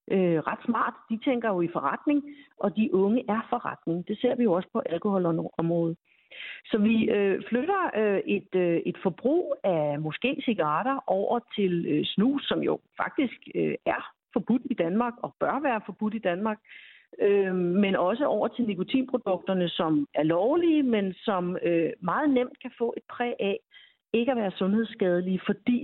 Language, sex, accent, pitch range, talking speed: Danish, female, native, 185-245 Hz, 175 wpm